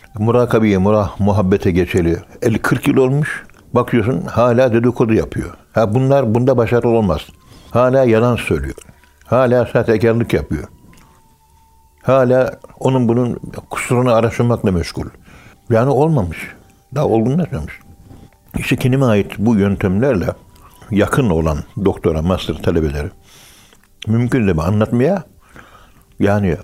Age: 60-79